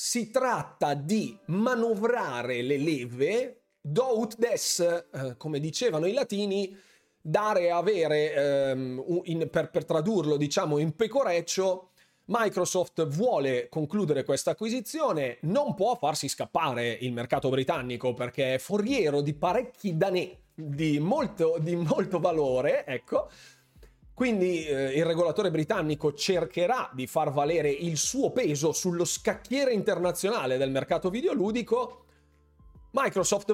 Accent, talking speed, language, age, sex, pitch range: native, 115 wpm, Italian, 30-49, male, 145-210 Hz